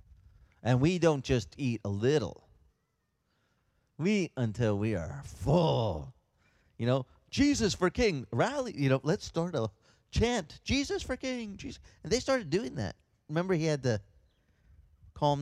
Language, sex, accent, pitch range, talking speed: English, male, American, 105-165 Hz, 150 wpm